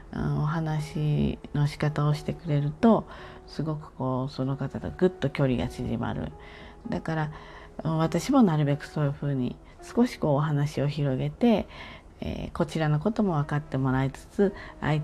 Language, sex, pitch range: Japanese, female, 130-180 Hz